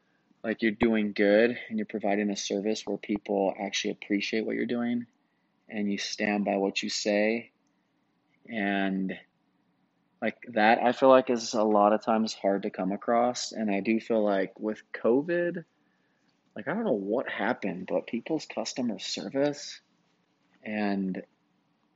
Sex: male